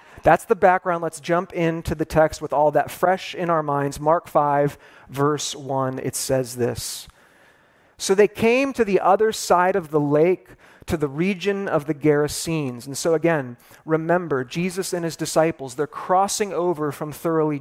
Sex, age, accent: male, 40-59, American